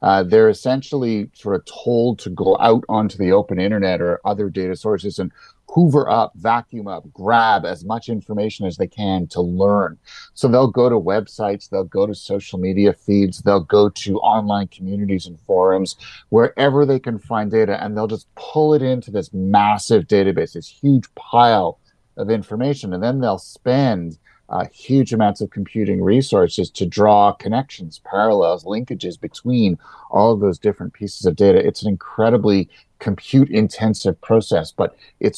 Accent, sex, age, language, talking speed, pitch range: American, male, 40-59, English, 165 wpm, 100-130 Hz